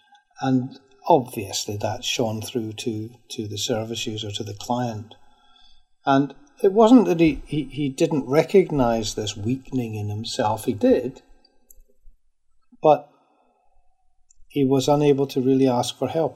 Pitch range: 110-150 Hz